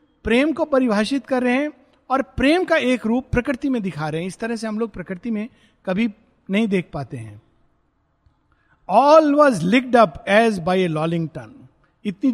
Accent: native